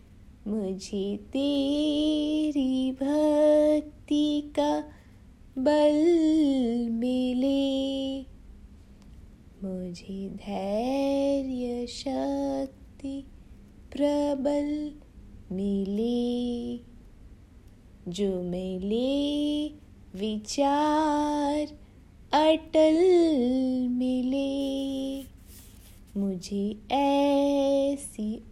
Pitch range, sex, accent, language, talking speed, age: 215-295 Hz, female, Indian, English, 40 wpm, 20-39